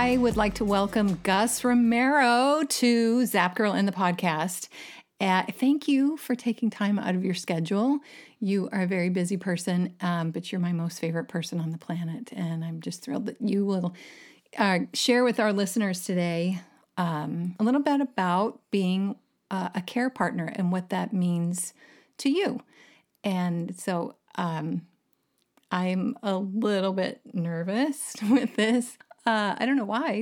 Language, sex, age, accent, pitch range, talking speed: English, female, 40-59, American, 180-225 Hz, 165 wpm